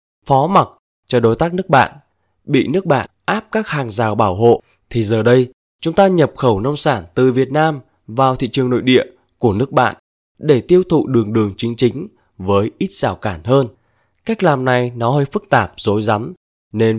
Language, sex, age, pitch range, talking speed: Vietnamese, male, 20-39, 110-155 Hz, 205 wpm